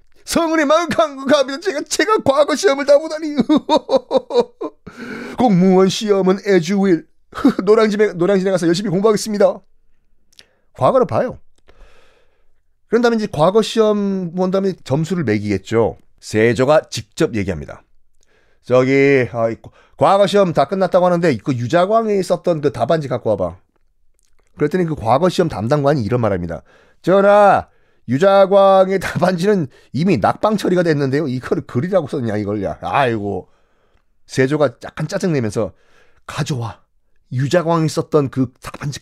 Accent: native